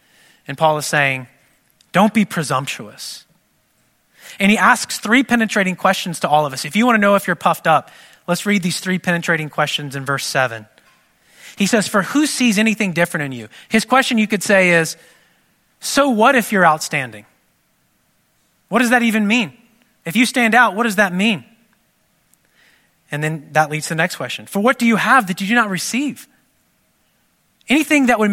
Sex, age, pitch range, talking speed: male, 30-49, 150-220 Hz, 190 wpm